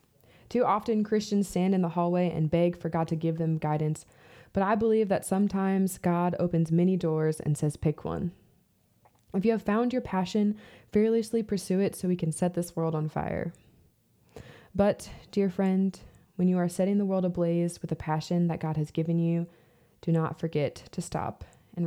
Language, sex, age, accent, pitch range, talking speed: English, female, 20-39, American, 155-180 Hz, 190 wpm